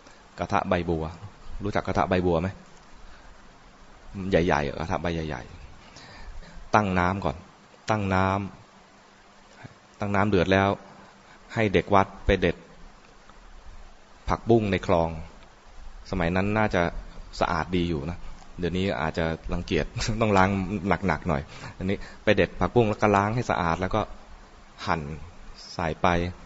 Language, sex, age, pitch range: English, male, 20-39, 85-105 Hz